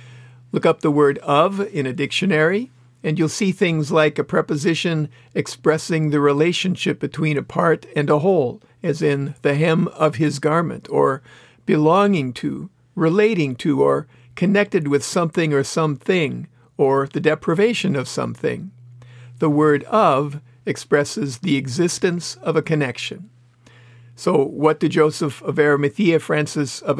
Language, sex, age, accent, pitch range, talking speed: English, male, 50-69, American, 140-165 Hz, 140 wpm